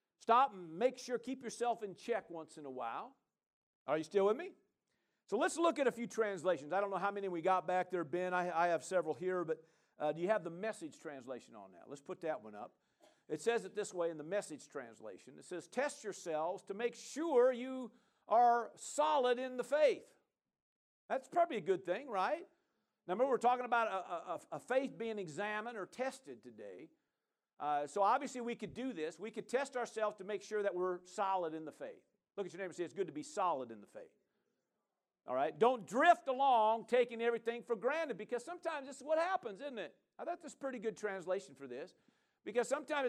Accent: American